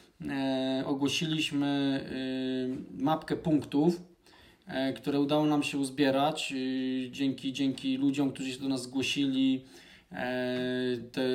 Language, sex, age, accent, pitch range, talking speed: Polish, male, 20-39, native, 130-160 Hz, 90 wpm